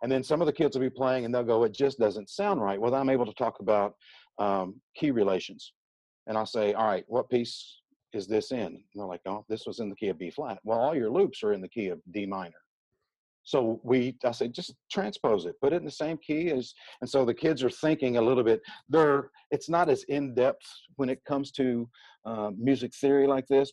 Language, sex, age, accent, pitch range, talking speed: English, male, 50-69, American, 105-140 Hz, 245 wpm